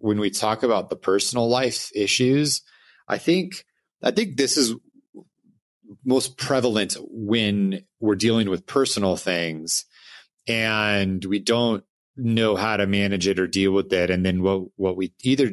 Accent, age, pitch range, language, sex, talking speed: American, 30-49, 95-115 Hz, English, male, 155 wpm